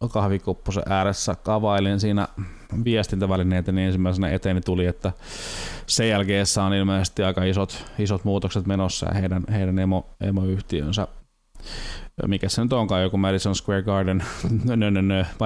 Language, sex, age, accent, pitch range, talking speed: Finnish, male, 20-39, native, 95-105 Hz, 130 wpm